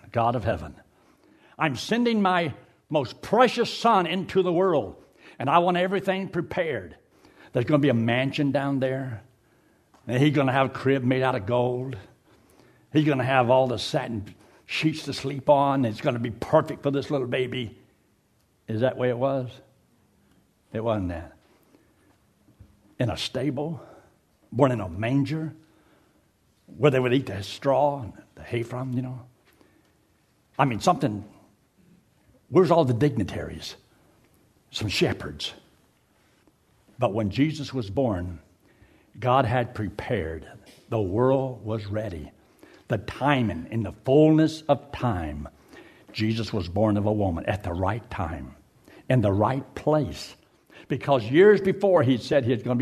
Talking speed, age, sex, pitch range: 155 wpm, 70-89, male, 110-145 Hz